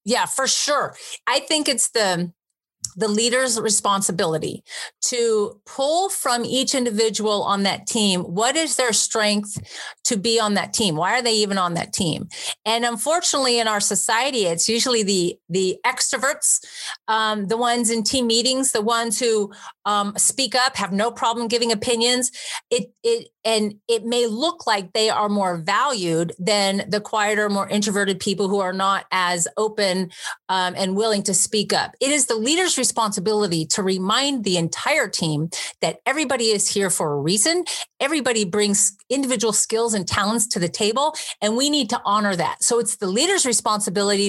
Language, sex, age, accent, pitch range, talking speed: English, female, 40-59, American, 200-250 Hz, 170 wpm